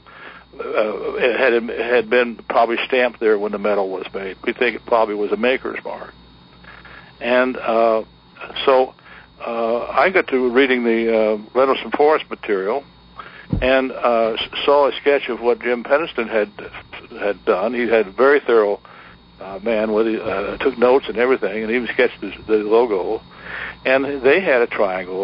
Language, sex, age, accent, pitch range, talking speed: English, male, 60-79, American, 105-130 Hz, 170 wpm